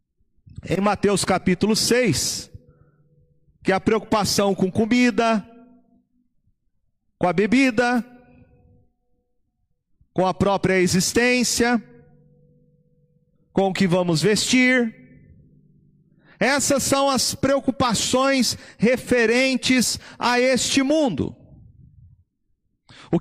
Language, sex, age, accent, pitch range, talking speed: Portuguese, male, 40-59, Brazilian, 200-295 Hz, 80 wpm